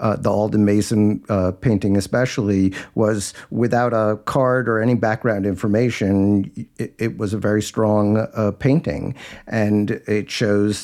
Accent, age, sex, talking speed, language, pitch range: American, 50-69, male, 145 wpm, English, 95-110 Hz